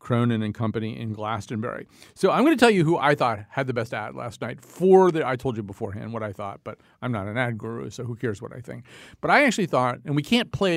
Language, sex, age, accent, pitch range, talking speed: English, male, 50-69, American, 115-150 Hz, 260 wpm